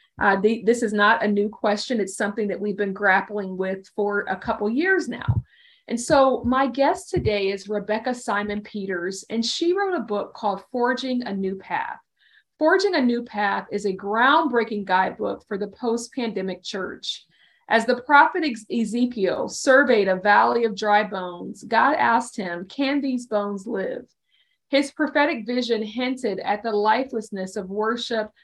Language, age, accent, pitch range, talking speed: English, 40-59, American, 205-255 Hz, 160 wpm